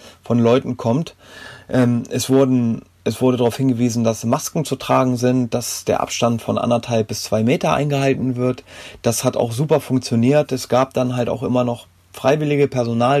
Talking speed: 175 wpm